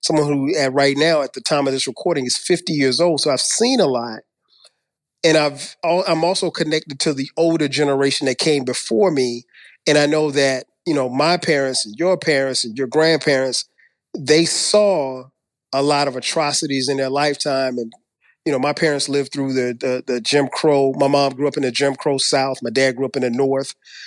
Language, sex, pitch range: English, male, 135-165 Hz